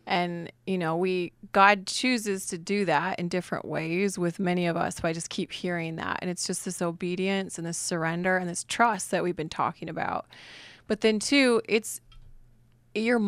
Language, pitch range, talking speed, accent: English, 175-210 Hz, 195 wpm, American